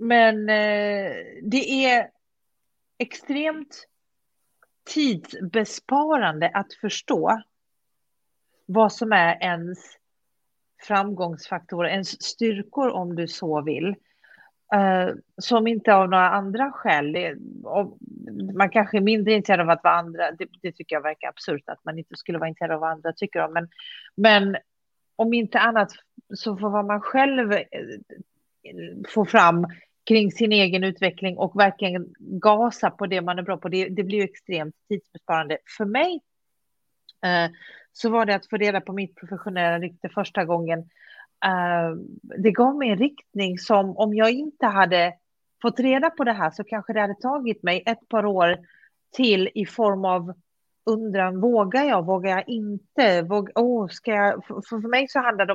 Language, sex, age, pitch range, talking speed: Swedish, female, 30-49, 180-225 Hz, 155 wpm